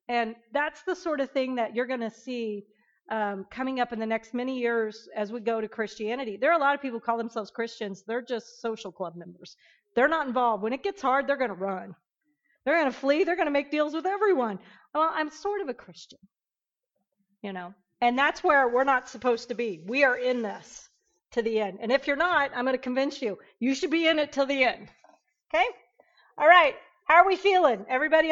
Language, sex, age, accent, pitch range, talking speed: English, female, 40-59, American, 225-305 Hz, 230 wpm